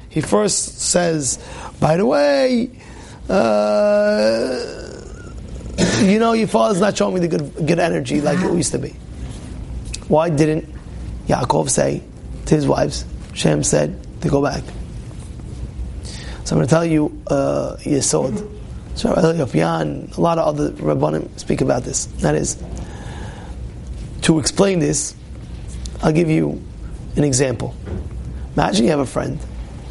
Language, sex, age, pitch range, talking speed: English, male, 30-49, 135-195 Hz, 130 wpm